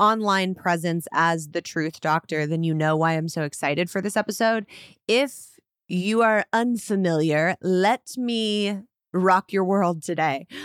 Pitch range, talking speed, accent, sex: 165-195 Hz, 145 wpm, American, female